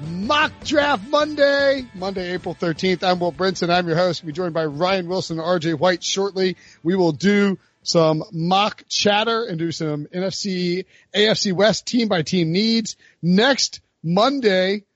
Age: 40-59